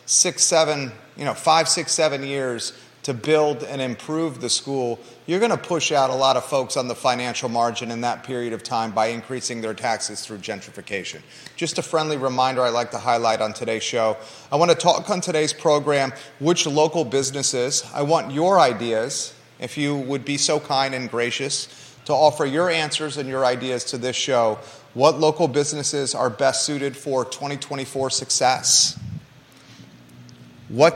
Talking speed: 175 wpm